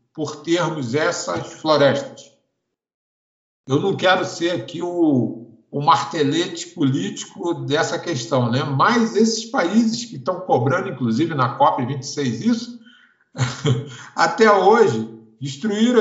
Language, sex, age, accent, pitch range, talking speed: Portuguese, male, 60-79, Brazilian, 135-185 Hz, 110 wpm